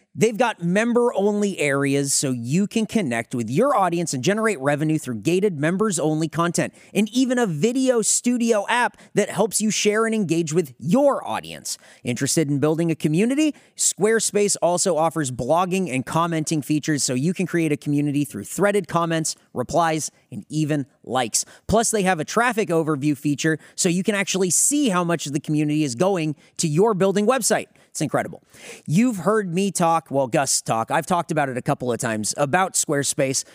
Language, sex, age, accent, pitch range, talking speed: English, male, 30-49, American, 150-205 Hz, 180 wpm